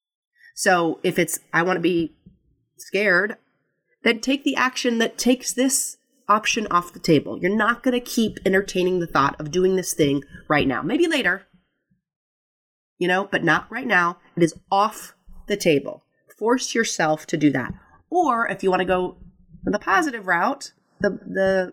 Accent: American